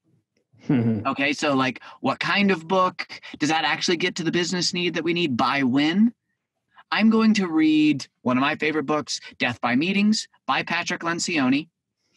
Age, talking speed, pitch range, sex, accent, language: 30-49, 175 wpm, 150-225 Hz, male, American, English